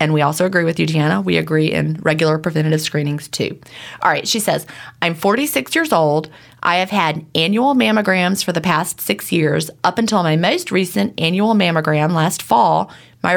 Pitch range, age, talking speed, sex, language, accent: 155-200 Hz, 30-49, 190 wpm, female, English, American